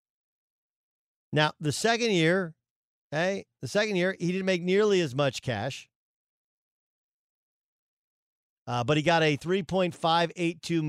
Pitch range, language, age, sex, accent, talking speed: 140-185 Hz, English, 50-69, male, American, 120 wpm